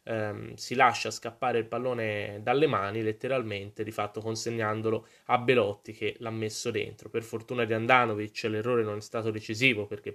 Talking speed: 160 wpm